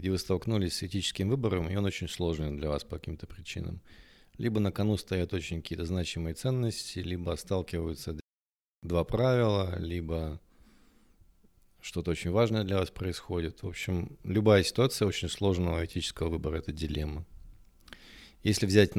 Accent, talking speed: native, 145 wpm